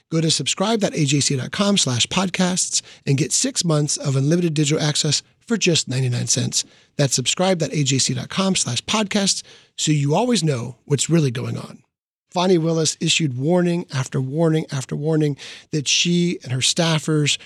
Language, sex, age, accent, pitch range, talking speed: English, male, 40-59, American, 140-175 Hz, 145 wpm